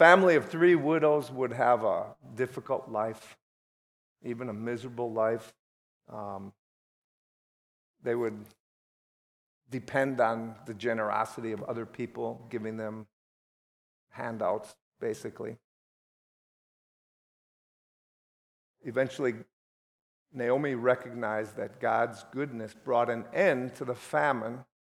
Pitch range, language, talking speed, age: 110-150 Hz, English, 95 wpm, 50-69